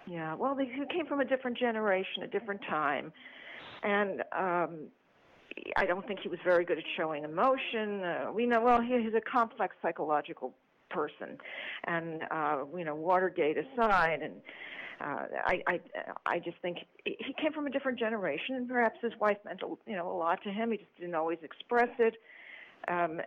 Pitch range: 170-220 Hz